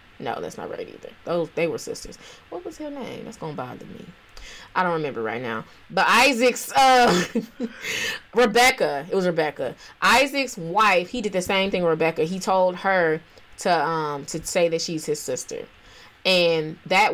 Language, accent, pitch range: English, American, 165-215 Hz